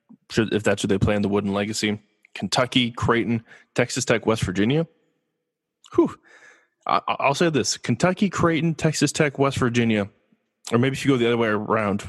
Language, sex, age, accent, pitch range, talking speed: English, male, 20-39, American, 115-150 Hz, 170 wpm